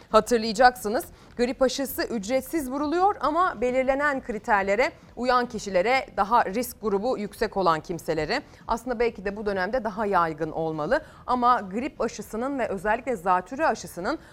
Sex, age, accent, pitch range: female, 30-49, native, 185-270 Hz